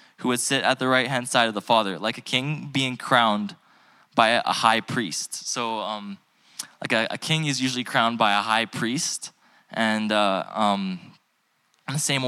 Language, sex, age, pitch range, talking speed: English, male, 10-29, 105-130 Hz, 190 wpm